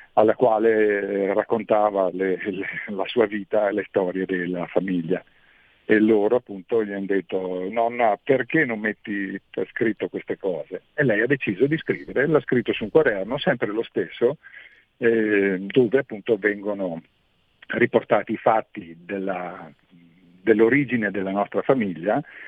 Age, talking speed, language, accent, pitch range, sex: 50-69, 140 wpm, Italian, native, 95-115 Hz, male